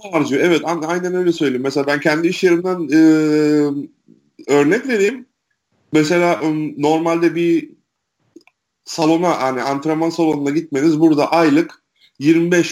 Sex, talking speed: male, 120 wpm